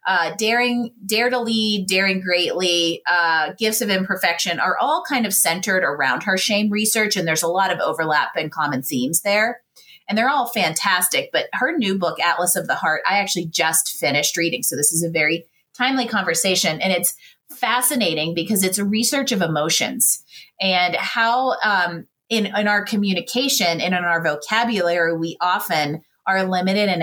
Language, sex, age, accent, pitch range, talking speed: English, female, 30-49, American, 165-215 Hz, 175 wpm